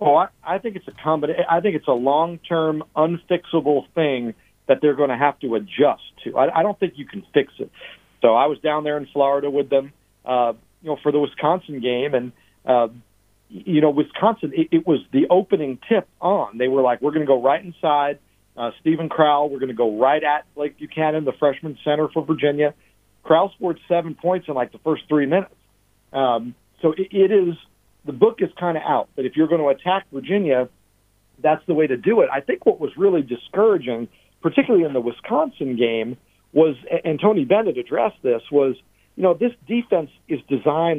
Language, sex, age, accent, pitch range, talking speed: English, male, 50-69, American, 125-170 Hz, 210 wpm